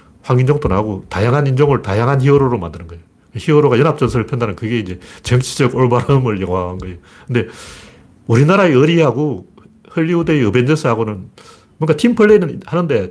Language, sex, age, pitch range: Korean, male, 40-59, 100-150 Hz